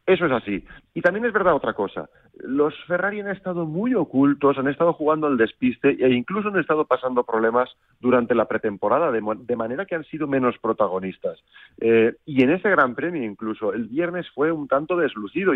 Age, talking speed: 40-59, 190 wpm